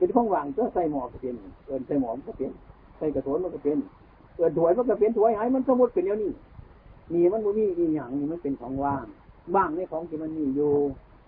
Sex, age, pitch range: male, 60-79, 120-180 Hz